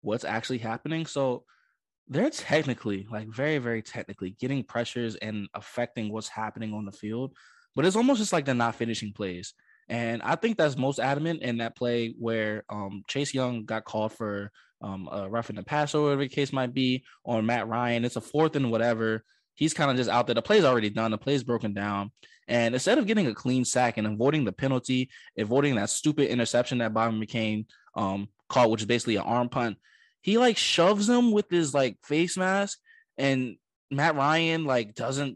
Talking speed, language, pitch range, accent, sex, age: 200 wpm, English, 110-145 Hz, American, male, 20-39